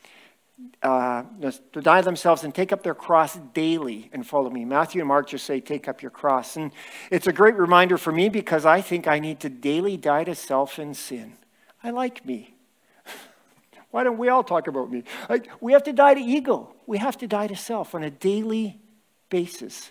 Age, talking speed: 50-69, 205 wpm